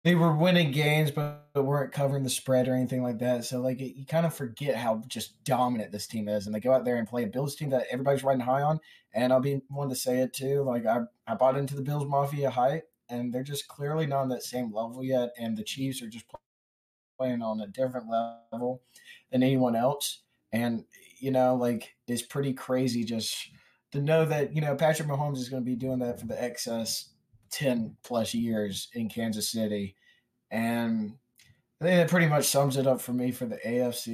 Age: 20-39